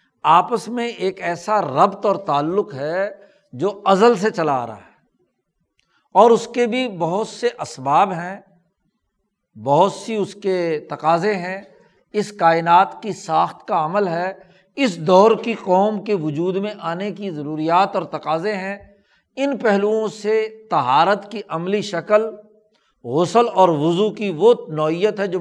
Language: Urdu